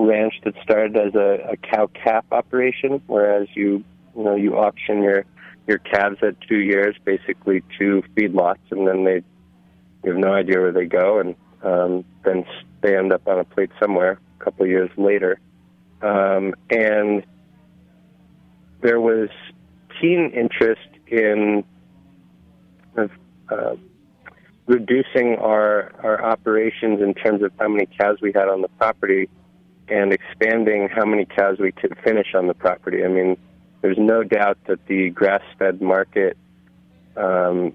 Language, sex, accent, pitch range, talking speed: English, male, American, 95-105 Hz, 145 wpm